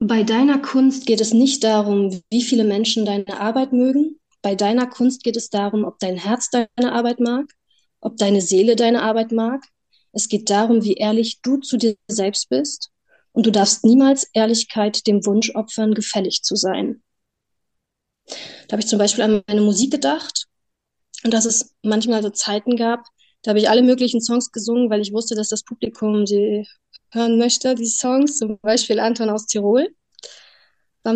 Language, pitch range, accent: German, 215-245 Hz, German